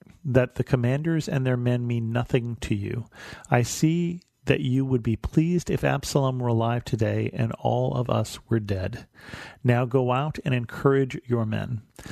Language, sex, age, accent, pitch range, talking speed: English, male, 40-59, American, 115-140 Hz, 175 wpm